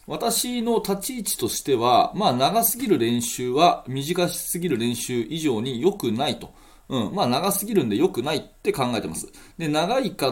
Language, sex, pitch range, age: Japanese, male, 120-190 Hz, 30-49